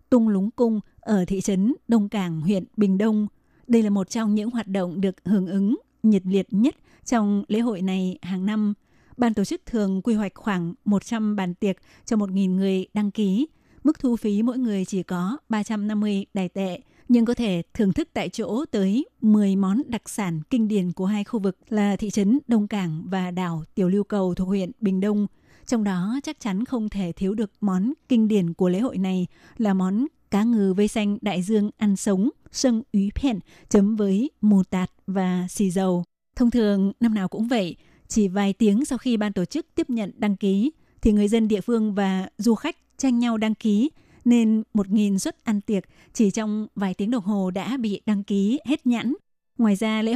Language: Vietnamese